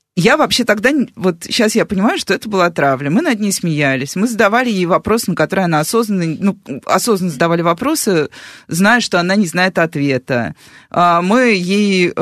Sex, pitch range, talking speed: female, 155-215 Hz, 170 wpm